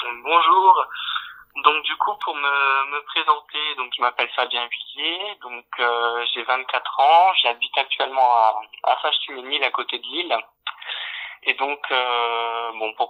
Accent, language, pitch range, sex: French, French, 120-145 Hz, male